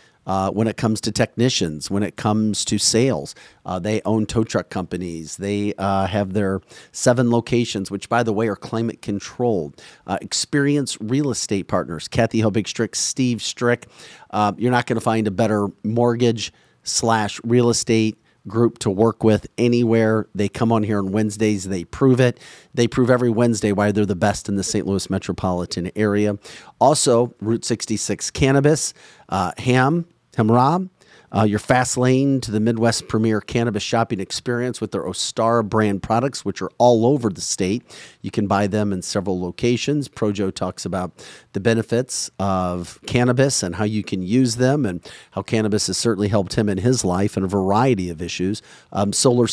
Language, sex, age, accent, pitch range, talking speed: English, male, 40-59, American, 100-120 Hz, 170 wpm